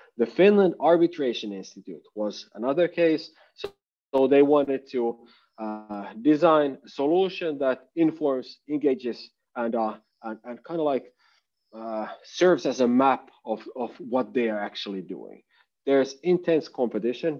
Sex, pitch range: male, 115-155 Hz